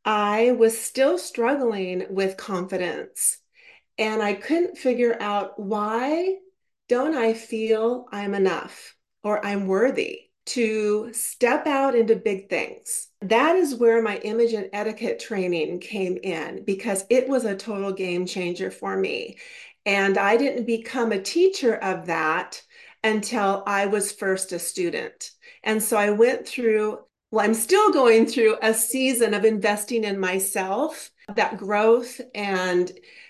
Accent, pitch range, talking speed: American, 205-275 Hz, 140 wpm